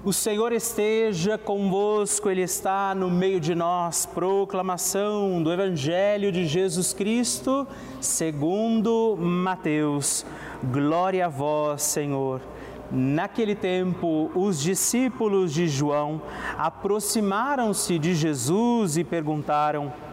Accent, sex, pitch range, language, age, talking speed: Brazilian, male, 160-200 Hz, Portuguese, 40-59, 100 wpm